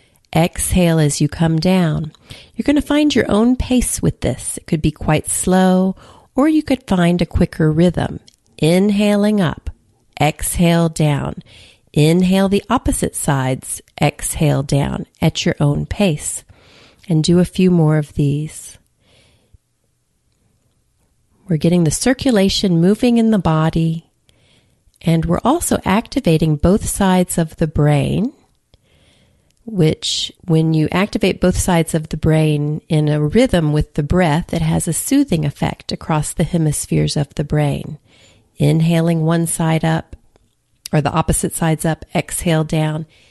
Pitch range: 155-190 Hz